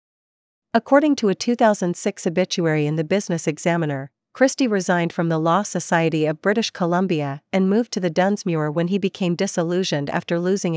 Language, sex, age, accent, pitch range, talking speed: English, female, 40-59, American, 160-200 Hz, 160 wpm